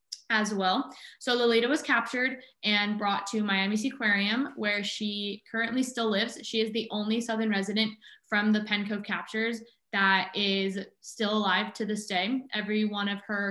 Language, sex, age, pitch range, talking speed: English, female, 20-39, 200-230 Hz, 170 wpm